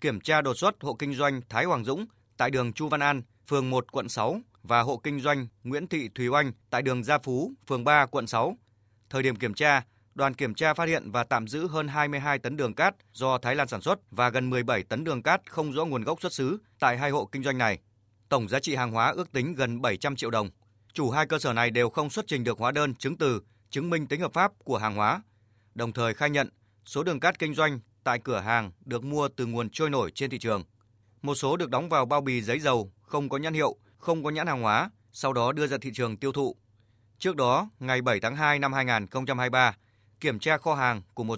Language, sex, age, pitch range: Vietnamese, male, 20-39, 110-145 Hz